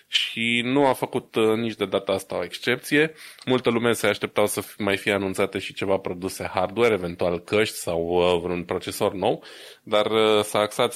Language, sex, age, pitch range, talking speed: Romanian, male, 20-39, 95-110 Hz, 170 wpm